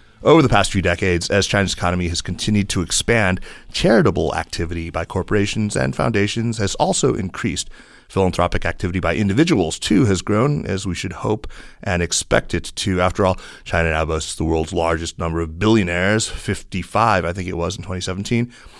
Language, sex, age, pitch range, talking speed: English, male, 30-49, 85-105 Hz, 170 wpm